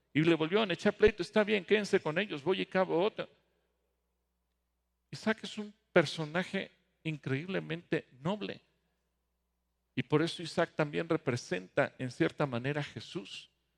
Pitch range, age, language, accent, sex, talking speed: 135-185 Hz, 50-69, English, Mexican, male, 140 wpm